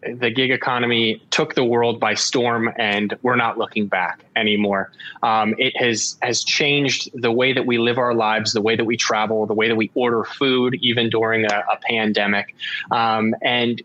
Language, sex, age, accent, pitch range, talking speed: English, male, 20-39, American, 110-130 Hz, 190 wpm